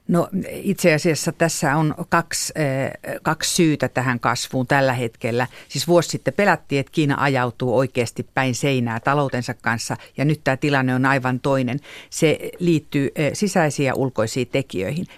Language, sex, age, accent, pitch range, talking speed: Finnish, female, 50-69, native, 130-170 Hz, 145 wpm